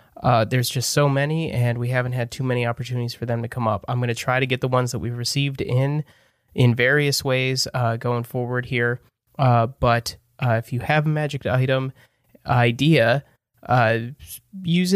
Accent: American